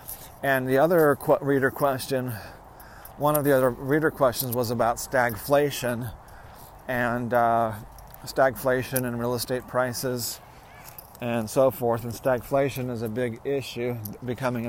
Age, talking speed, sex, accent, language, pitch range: 40-59, 125 wpm, male, American, English, 115-130 Hz